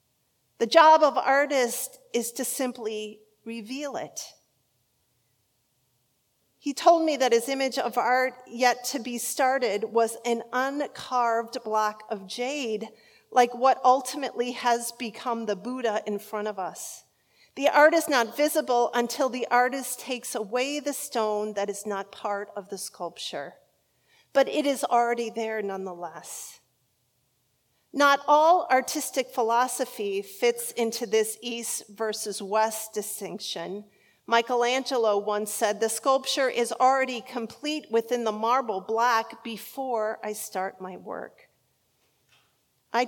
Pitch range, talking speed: 195-250 Hz, 130 wpm